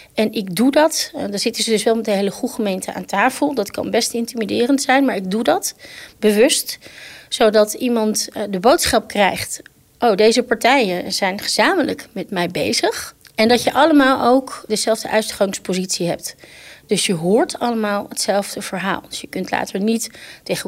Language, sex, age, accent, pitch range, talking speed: Dutch, female, 30-49, Dutch, 205-260 Hz, 170 wpm